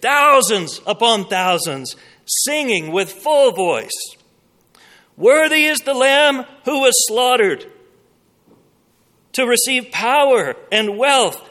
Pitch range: 160-245 Hz